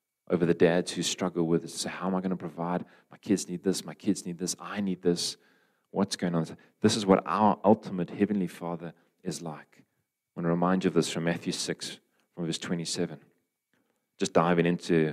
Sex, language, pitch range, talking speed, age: male, English, 85-100 Hz, 205 wpm, 40-59